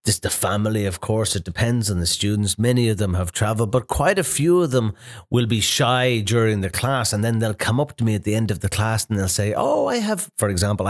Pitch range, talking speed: 90-120 Hz, 265 wpm